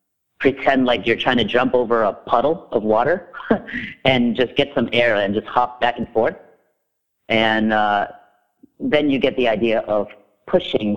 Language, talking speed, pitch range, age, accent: English, 170 wpm, 110-145 Hz, 40-59, American